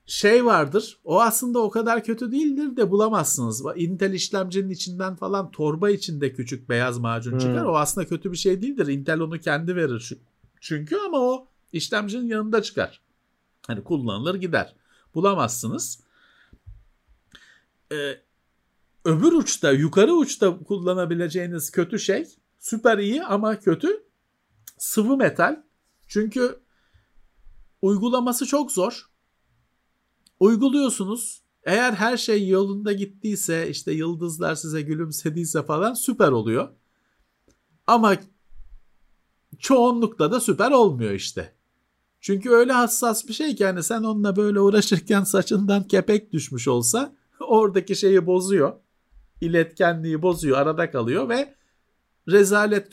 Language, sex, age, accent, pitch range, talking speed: Turkish, male, 50-69, native, 150-220 Hz, 115 wpm